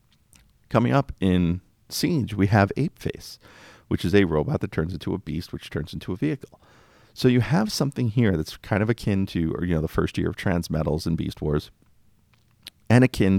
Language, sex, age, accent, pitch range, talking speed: English, male, 40-59, American, 80-105 Hz, 200 wpm